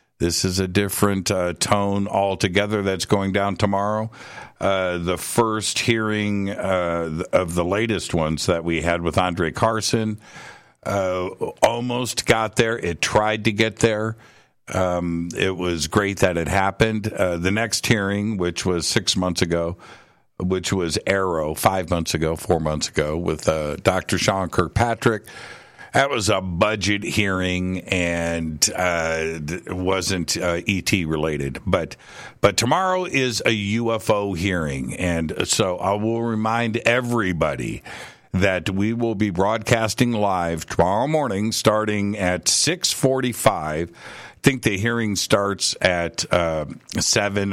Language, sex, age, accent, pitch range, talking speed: English, male, 50-69, American, 85-110 Hz, 140 wpm